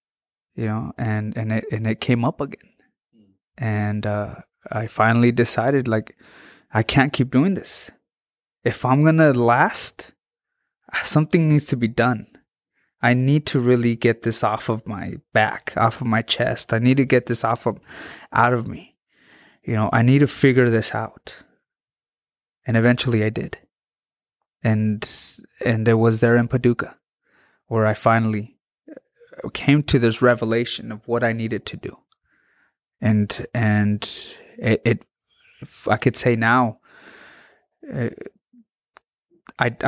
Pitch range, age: 110-125 Hz, 20-39